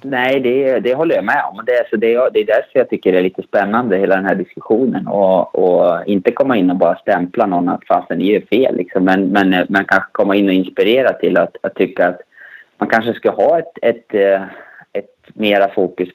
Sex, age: male, 20-39